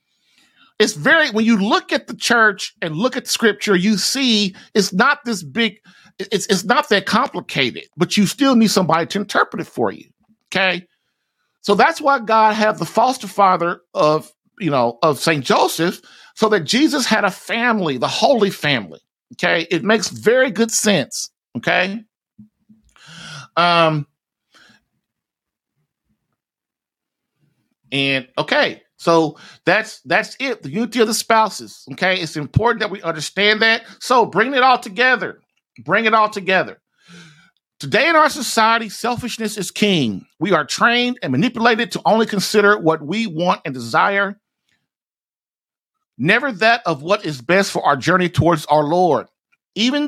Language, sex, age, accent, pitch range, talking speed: English, male, 50-69, American, 170-230 Hz, 145 wpm